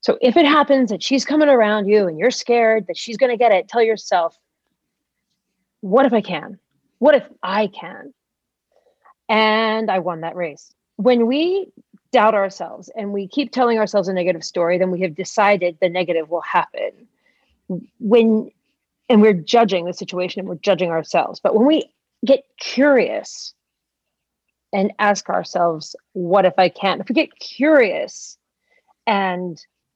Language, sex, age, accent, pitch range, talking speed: English, female, 30-49, American, 185-250 Hz, 160 wpm